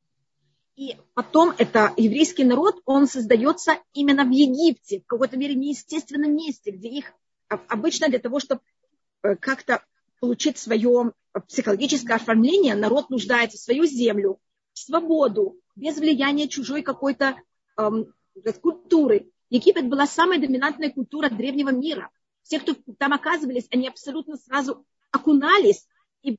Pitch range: 235-295 Hz